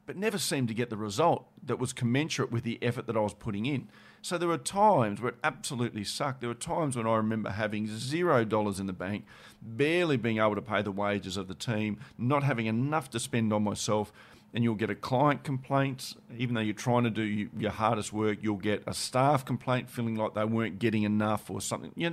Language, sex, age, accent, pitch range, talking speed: English, male, 40-59, Australian, 105-130 Hz, 230 wpm